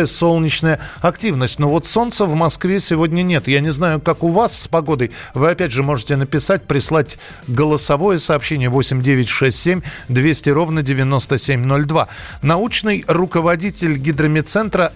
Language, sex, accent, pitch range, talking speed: Russian, male, native, 135-170 Hz, 130 wpm